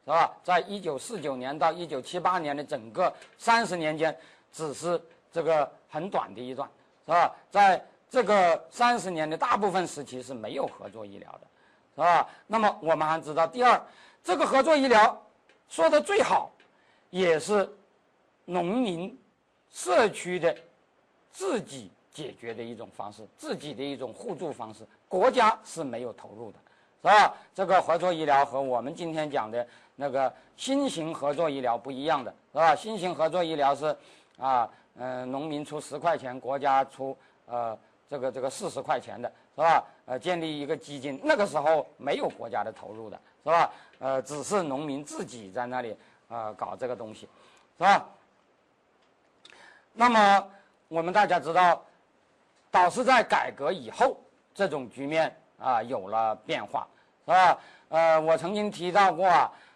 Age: 50-69